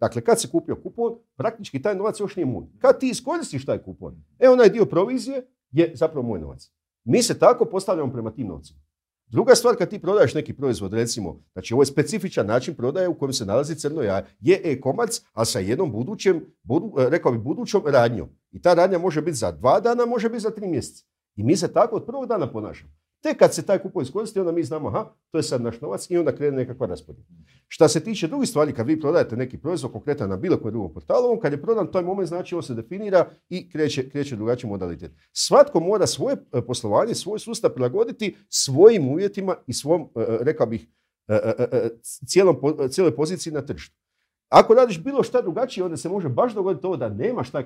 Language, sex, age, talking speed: Croatian, male, 50-69, 210 wpm